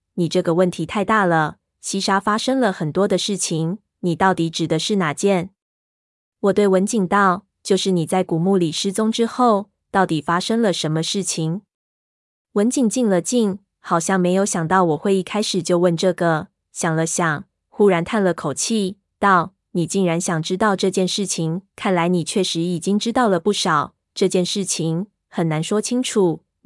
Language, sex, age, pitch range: Chinese, female, 20-39, 175-205 Hz